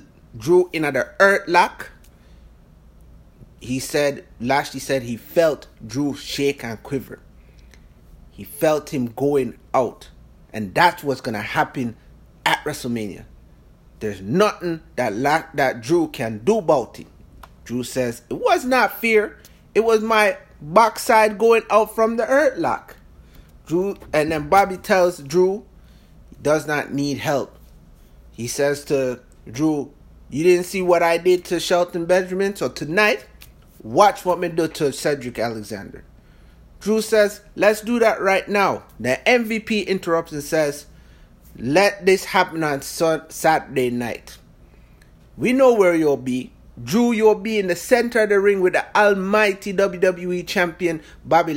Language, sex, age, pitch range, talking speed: English, male, 30-49, 130-200 Hz, 145 wpm